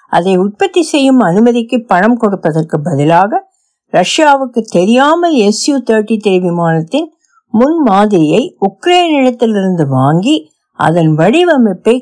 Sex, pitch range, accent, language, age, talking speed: female, 175-265 Hz, native, Tamil, 60-79, 100 wpm